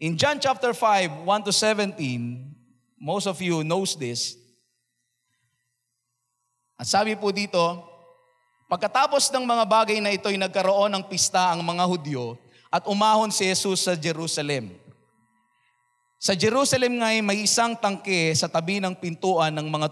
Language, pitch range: Filipino, 145-200 Hz